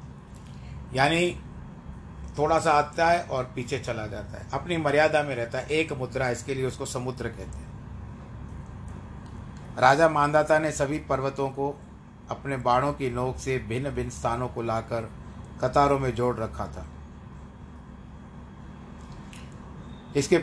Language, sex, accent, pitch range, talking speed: Hindi, male, native, 115-145 Hz, 130 wpm